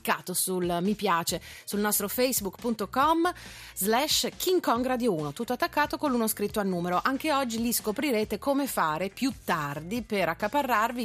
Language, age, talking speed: Italian, 30-49, 140 wpm